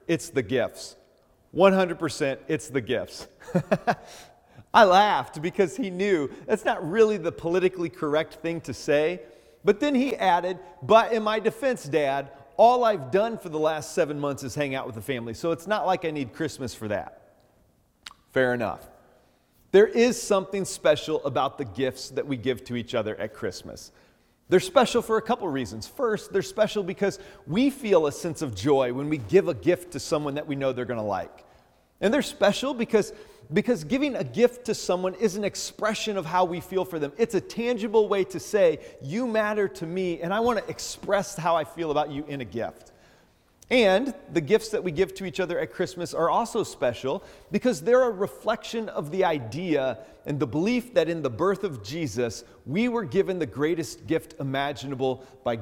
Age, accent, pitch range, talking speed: 40-59, American, 140-195 Hz, 195 wpm